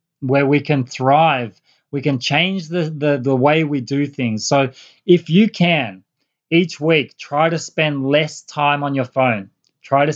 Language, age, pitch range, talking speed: English, 20-39, 130-155 Hz, 175 wpm